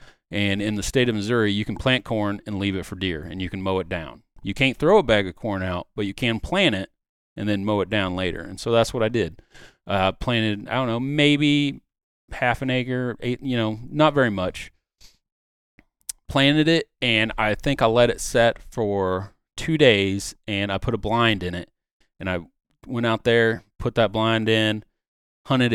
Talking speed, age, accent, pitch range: 205 wpm, 30-49, American, 95-120 Hz